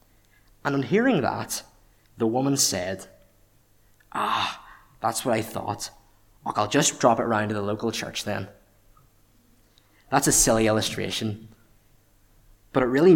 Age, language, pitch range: 20-39, English, 105-120 Hz